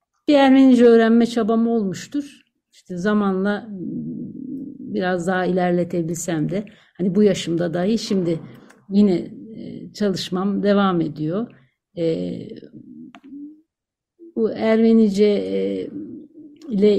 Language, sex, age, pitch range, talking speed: Turkish, female, 60-79, 185-240 Hz, 80 wpm